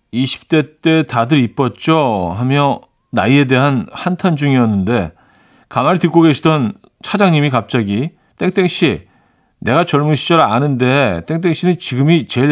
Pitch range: 120-170 Hz